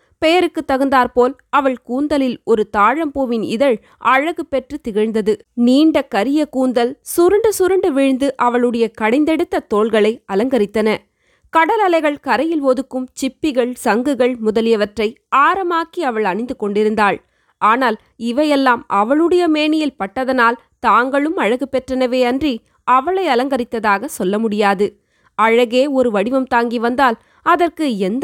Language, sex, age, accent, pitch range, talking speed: Tamil, female, 20-39, native, 225-295 Hz, 105 wpm